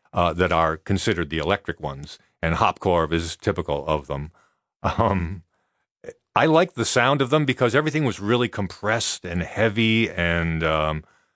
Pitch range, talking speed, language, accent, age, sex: 85-110 Hz, 160 wpm, English, American, 40-59, male